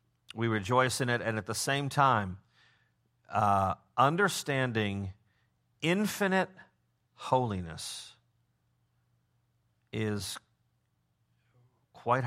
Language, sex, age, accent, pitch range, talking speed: English, male, 50-69, American, 110-130 Hz, 75 wpm